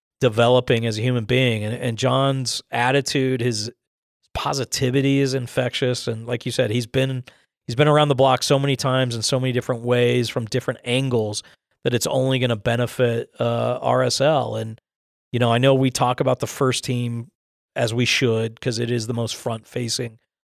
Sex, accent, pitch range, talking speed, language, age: male, American, 120-130 Hz, 180 wpm, English, 40-59